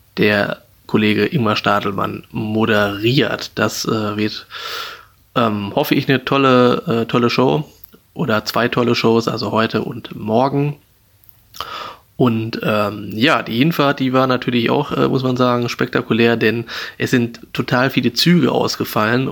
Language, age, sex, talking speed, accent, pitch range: German, 20-39, male, 135 wpm, German, 110-130 Hz